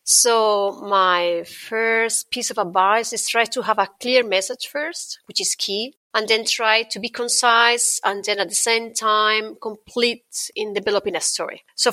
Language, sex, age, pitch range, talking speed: English, female, 30-49, 195-240 Hz, 175 wpm